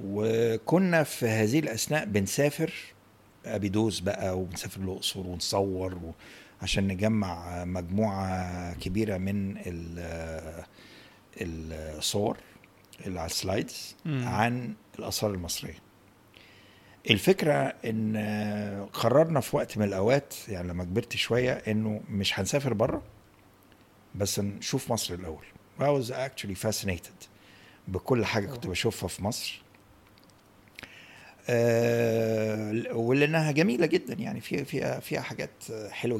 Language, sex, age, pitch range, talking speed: Arabic, male, 60-79, 95-115 Hz, 95 wpm